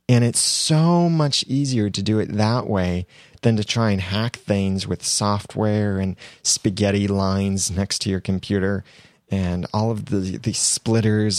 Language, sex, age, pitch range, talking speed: English, male, 30-49, 95-125 Hz, 165 wpm